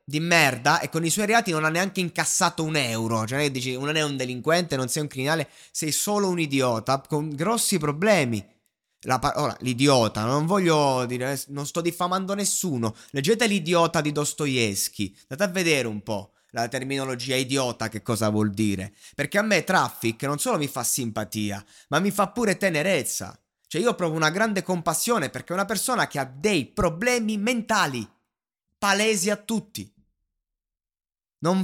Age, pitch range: 20-39, 130-195 Hz